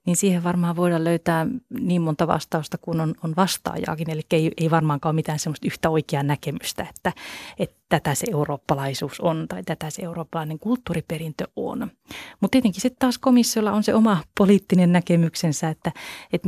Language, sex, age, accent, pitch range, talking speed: Finnish, female, 30-49, native, 160-185 Hz, 170 wpm